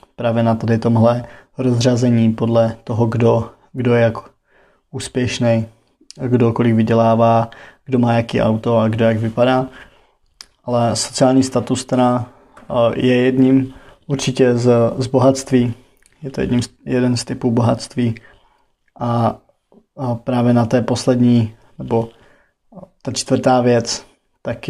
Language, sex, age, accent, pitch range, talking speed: Czech, male, 20-39, native, 115-125 Hz, 120 wpm